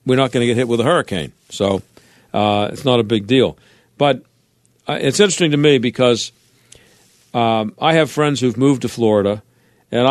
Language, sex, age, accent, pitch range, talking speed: English, male, 50-69, American, 120-145 Hz, 190 wpm